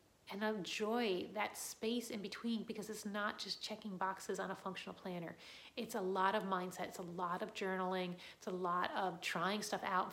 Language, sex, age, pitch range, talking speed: English, female, 30-49, 185-230 Hz, 200 wpm